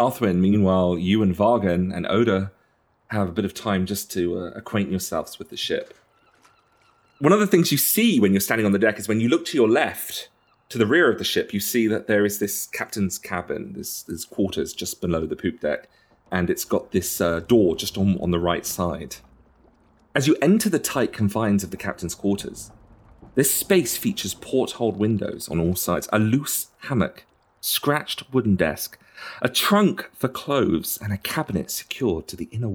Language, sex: English, male